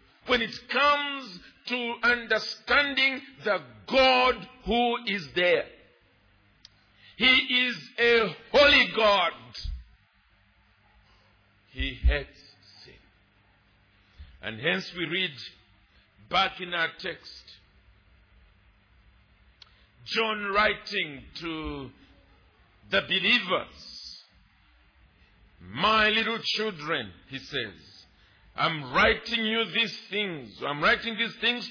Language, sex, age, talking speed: English, male, 50-69, 85 wpm